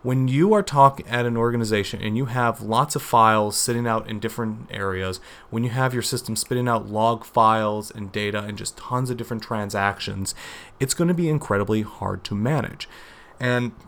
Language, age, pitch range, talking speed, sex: English, 30-49, 105-130 Hz, 190 wpm, male